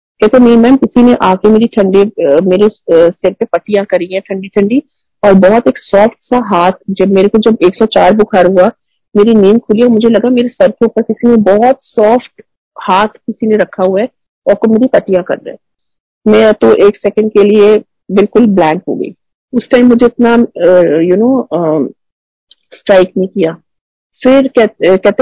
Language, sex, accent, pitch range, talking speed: Hindi, female, native, 190-230 Hz, 180 wpm